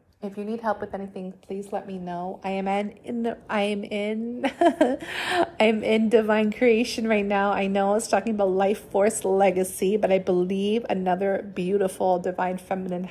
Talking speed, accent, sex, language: 185 wpm, American, female, English